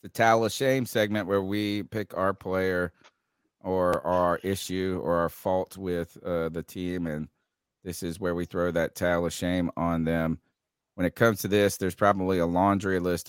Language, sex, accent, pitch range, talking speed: English, male, American, 90-105 Hz, 190 wpm